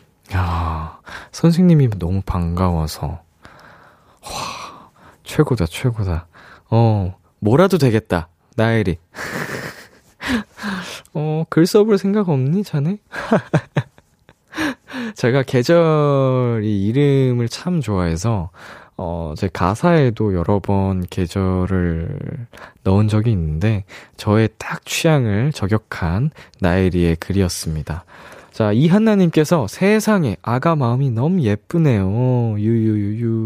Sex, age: male, 20-39